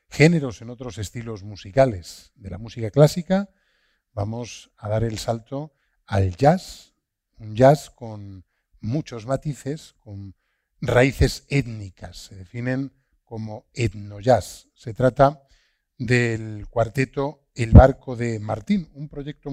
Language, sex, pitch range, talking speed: Spanish, male, 110-145 Hz, 120 wpm